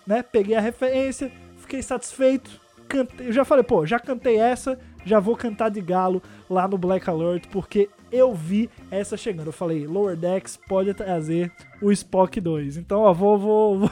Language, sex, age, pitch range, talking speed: Portuguese, male, 20-39, 180-235 Hz, 175 wpm